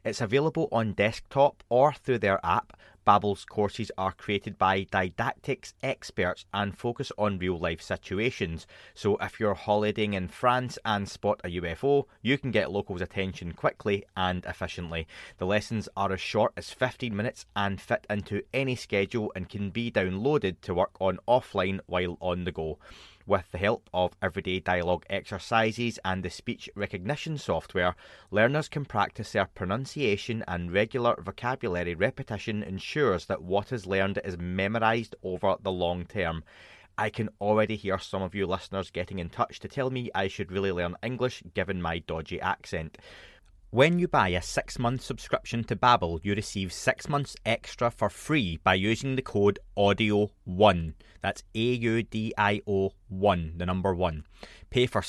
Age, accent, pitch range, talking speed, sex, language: 20-39, British, 90-115 Hz, 160 wpm, male, English